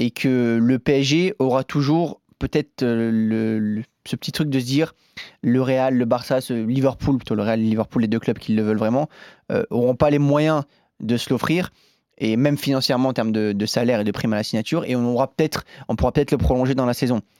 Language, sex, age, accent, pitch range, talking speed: French, male, 20-39, French, 115-145 Hz, 230 wpm